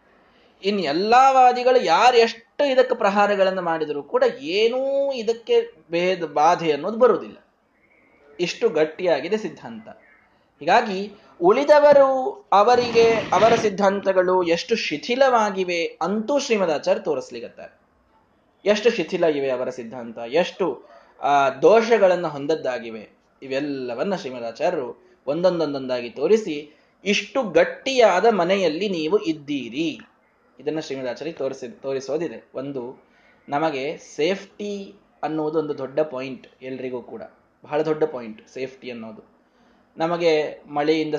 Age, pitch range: 20-39, 135-220 Hz